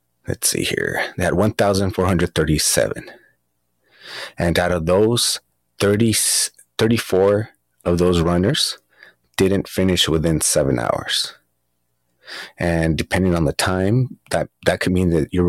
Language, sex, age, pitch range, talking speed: English, male, 30-49, 80-100 Hz, 115 wpm